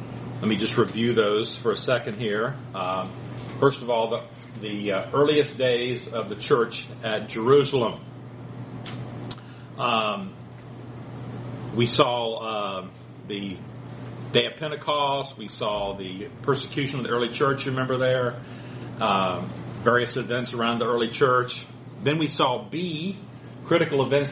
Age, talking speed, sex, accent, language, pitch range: 40-59, 135 wpm, male, American, English, 115-135 Hz